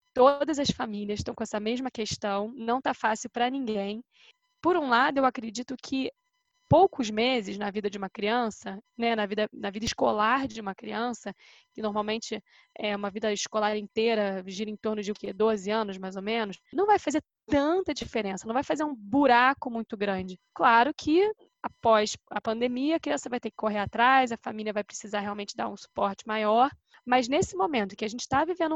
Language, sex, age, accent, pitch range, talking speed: Portuguese, female, 10-29, Brazilian, 215-270 Hz, 195 wpm